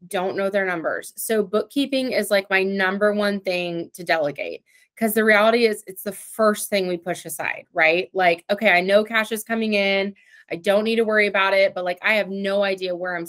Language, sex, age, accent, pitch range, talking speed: English, female, 20-39, American, 190-230 Hz, 220 wpm